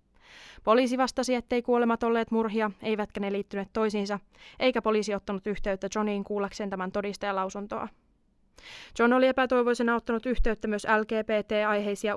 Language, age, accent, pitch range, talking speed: Finnish, 20-39, native, 200-235 Hz, 125 wpm